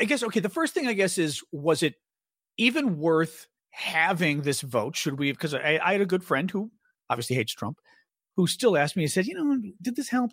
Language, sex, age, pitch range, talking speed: English, male, 40-59, 130-195 Hz, 230 wpm